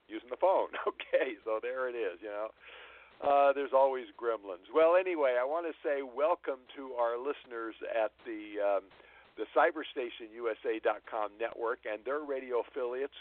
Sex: male